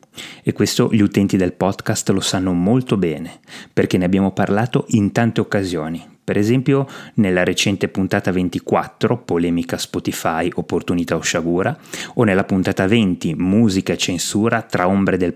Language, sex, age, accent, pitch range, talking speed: Italian, male, 30-49, native, 90-135 Hz, 150 wpm